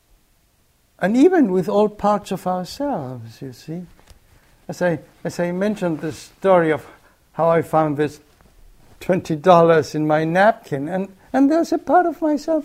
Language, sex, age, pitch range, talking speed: English, male, 60-79, 155-210 Hz, 150 wpm